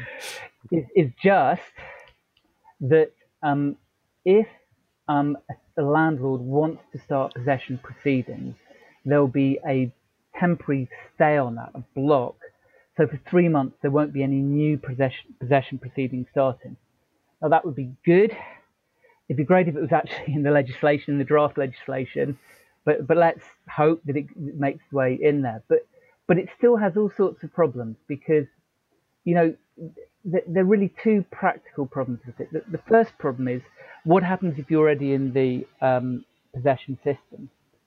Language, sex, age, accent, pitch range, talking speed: English, male, 40-59, British, 135-170 Hz, 155 wpm